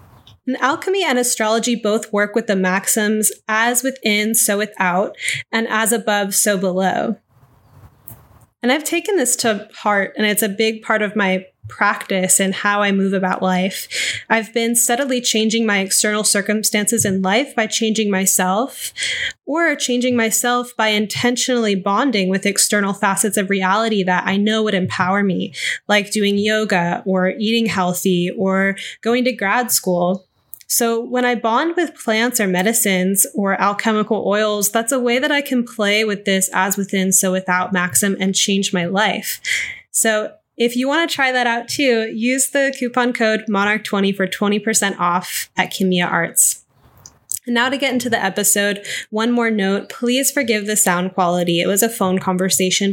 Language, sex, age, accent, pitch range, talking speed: English, female, 10-29, American, 195-240 Hz, 165 wpm